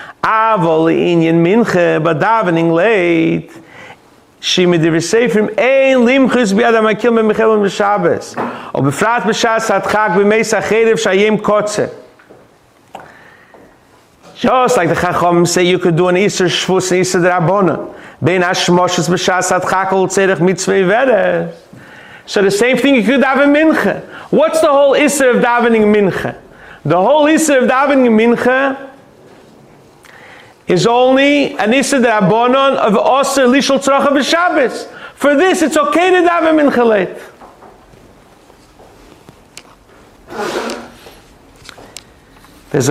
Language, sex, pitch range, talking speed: English, male, 180-260 Hz, 65 wpm